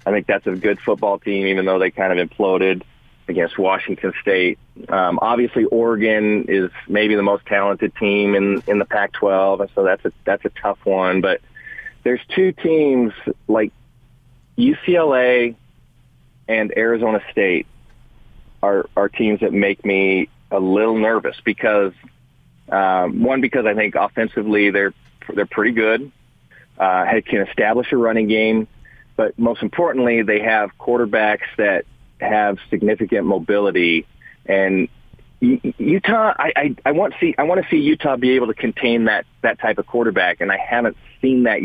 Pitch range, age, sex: 100-125 Hz, 30-49, male